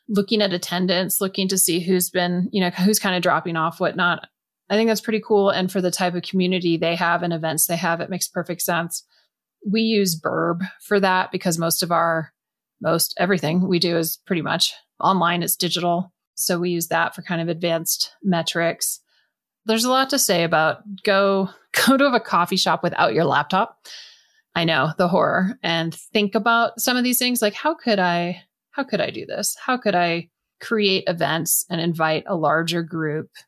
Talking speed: 195 wpm